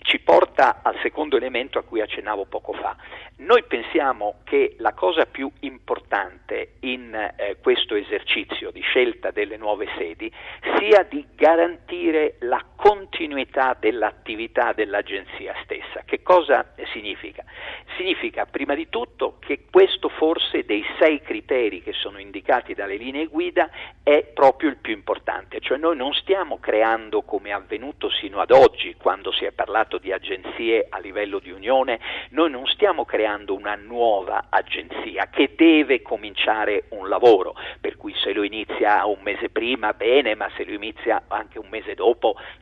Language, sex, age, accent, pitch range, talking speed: Italian, male, 50-69, native, 330-435 Hz, 150 wpm